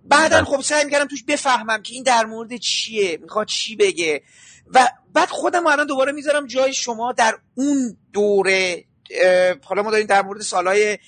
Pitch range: 200-255 Hz